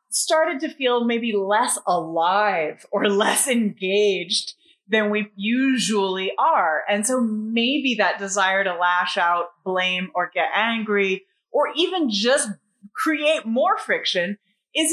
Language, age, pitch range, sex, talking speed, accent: English, 30-49, 195-285 Hz, female, 130 wpm, American